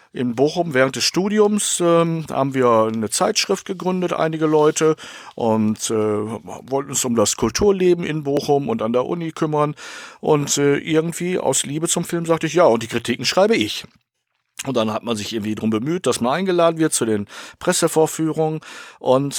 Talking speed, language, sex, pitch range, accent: 180 wpm, German, male, 115-160 Hz, German